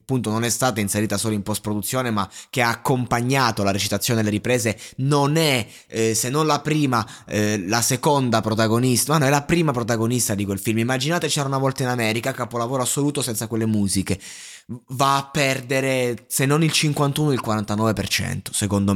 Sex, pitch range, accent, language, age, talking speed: male, 105-140 Hz, native, Italian, 20-39, 185 wpm